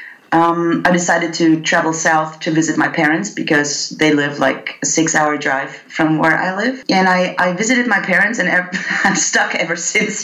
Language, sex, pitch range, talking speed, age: English, female, 155-185 Hz, 190 wpm, 30-49